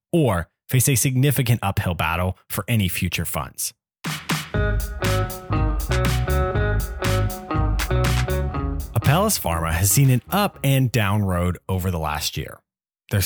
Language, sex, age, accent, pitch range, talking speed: English, male, 30-49, American, 95-135 Hz, 110 wpm